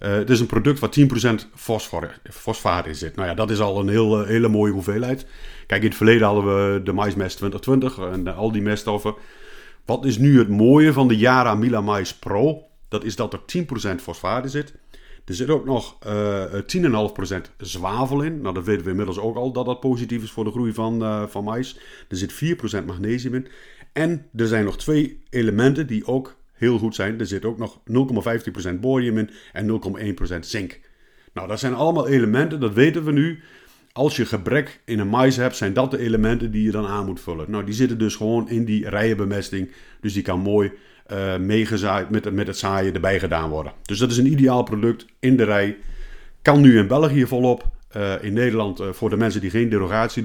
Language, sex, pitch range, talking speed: Dutch, male, 100-125 Hz, 215 wpm